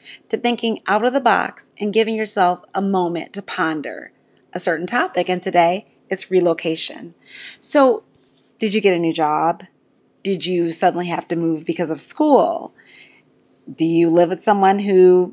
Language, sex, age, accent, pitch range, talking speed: English, female, 30-49, American, 170-215 Hz, 165 wpm